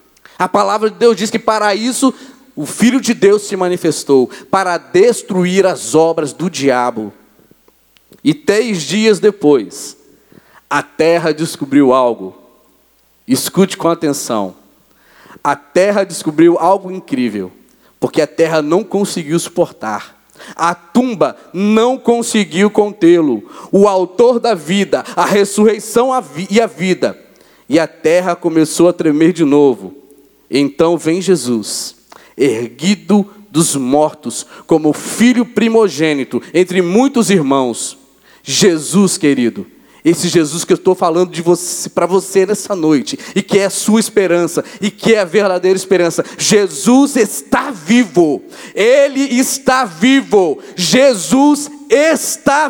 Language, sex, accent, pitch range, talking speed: Portuguese, male, Brazilian, 165-245 Hz, 125 wpm